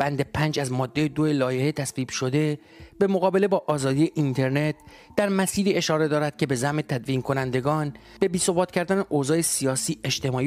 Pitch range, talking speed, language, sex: 130-165 Hz, 160 wpm, English, male